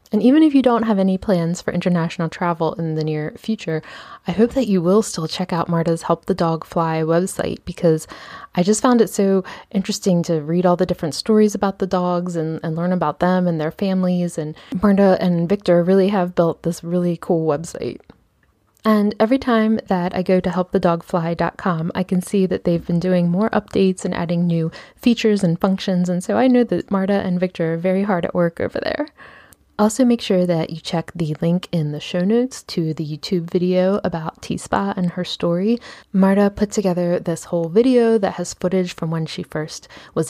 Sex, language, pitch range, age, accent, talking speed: female, English, 170-200 Hz, 20-39, American, 205 wpm